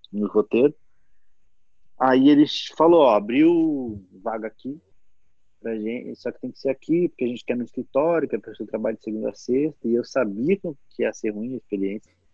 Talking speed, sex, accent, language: 190 wpm, male, Brazilian, Portuguese